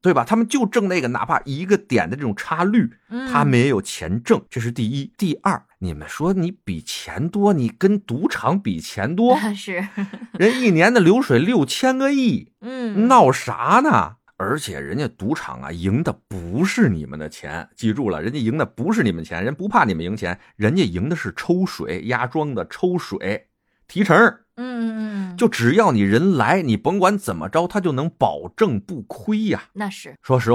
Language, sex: Chinese, male